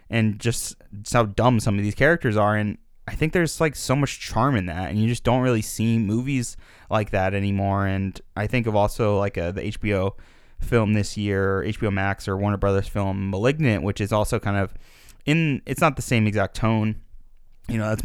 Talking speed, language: 205 wpm, English